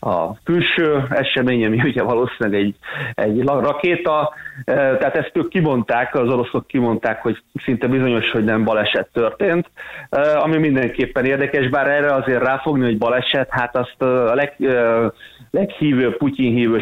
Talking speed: 145 wpm